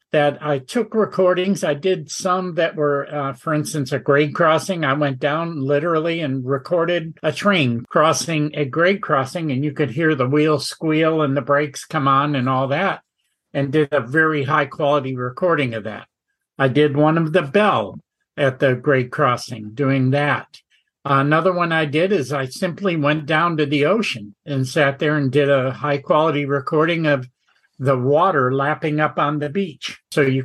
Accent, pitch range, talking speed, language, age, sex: American, 140-175 Hz, 180 wpm, English, 50-69, male